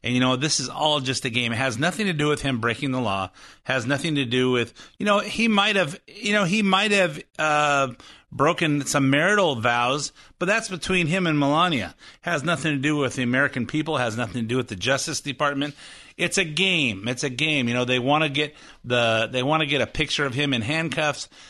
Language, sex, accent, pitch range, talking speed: English, male, American, 125-155 Hz, 245 wpm